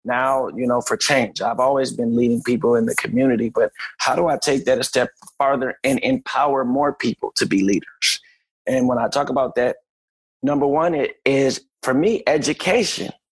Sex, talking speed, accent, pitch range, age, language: male, 190 wpm, American, 130-155 Hz, 30-49, English